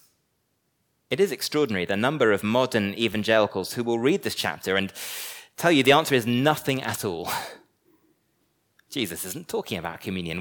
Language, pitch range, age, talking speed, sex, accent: English, 105-155 Hz, 30-49, 155 wpm, male, British